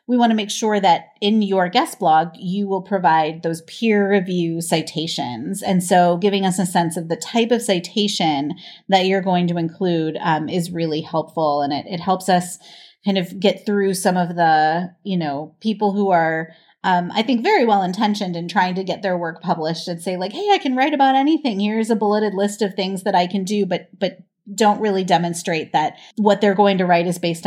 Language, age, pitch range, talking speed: English, 30-49, 165-200 Hz, 215 wpm